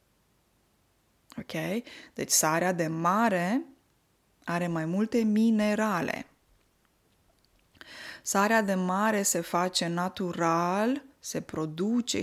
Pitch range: 180-235 Hz